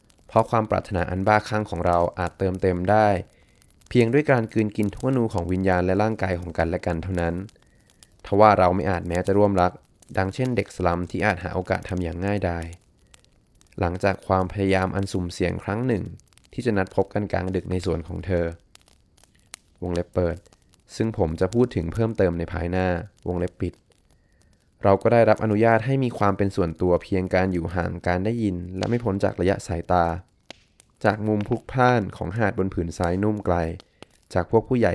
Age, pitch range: 20-39, 90-105 Hz